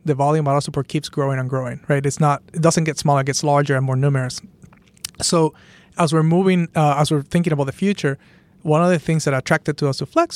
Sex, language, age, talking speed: male, English, 30-49, 250 wpm